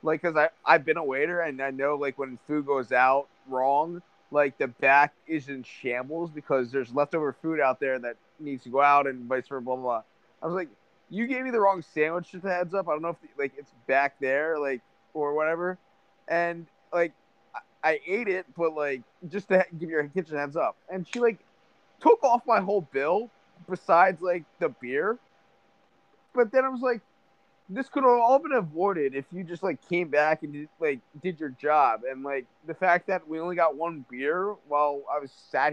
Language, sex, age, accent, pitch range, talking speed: English, male, 20-39, American, 145-205 Hz, 210 wpm